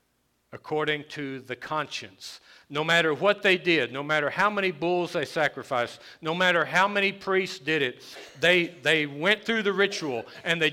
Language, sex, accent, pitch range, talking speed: English, male, American, 140-190 Hz, 175 wpm